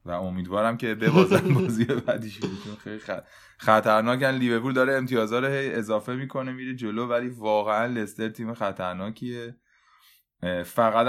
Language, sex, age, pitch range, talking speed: Persian, male, 20-39, 105-120 Hz, 130 wpm